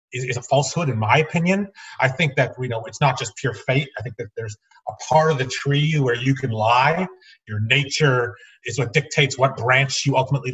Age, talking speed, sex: 30-49, 215 wpm, male